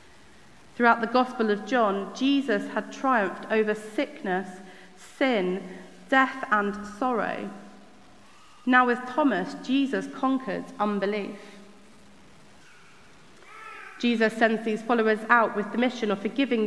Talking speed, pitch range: 110 wpm, 210-250 Hz